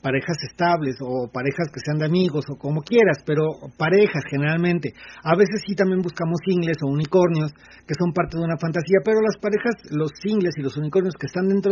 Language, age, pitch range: Spanish, 40-59, 145-185 Hz